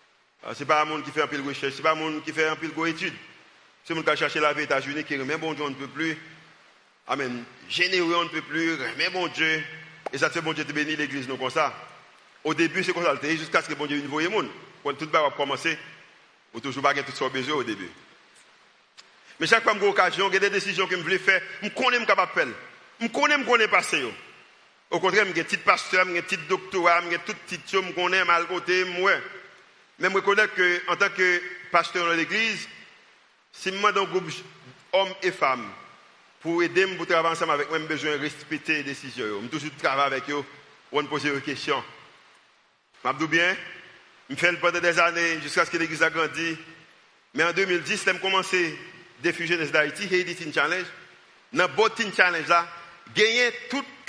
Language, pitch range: French, 155-185 Hz